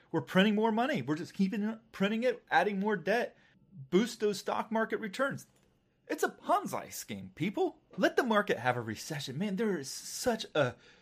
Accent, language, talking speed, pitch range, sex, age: American, English, 180 wpm, 145-210 Hz, male, 30-49